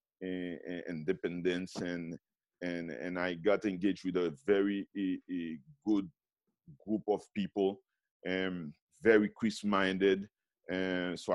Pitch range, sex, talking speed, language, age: 95-120 Hz, male, 105 wpm, English, 50-69